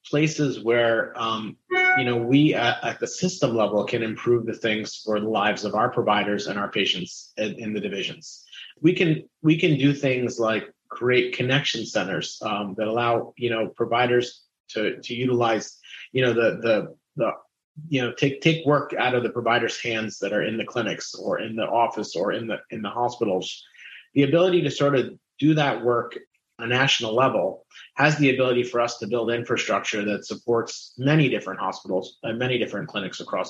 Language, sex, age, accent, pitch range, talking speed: English, male, 30-49, American, 115-135 Hz, 190 wpm